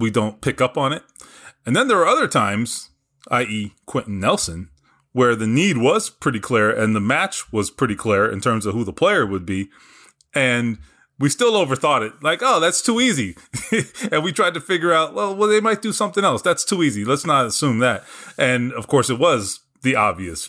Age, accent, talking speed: 30-49, American, 210 wpm